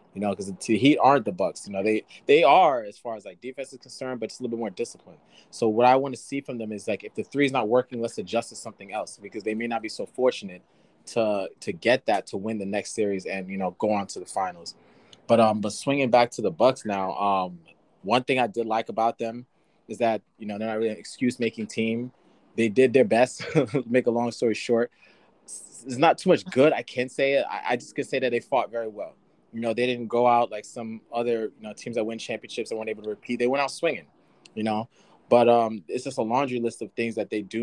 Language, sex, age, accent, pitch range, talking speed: English, male, 20-39, American, 105-125 Hz, 265 wpm